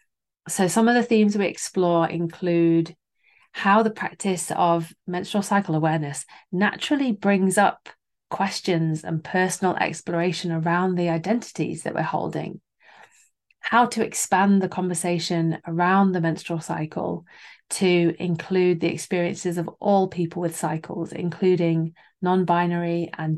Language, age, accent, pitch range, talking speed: English, 30-49, British, 165-190 Hz, 125 wpm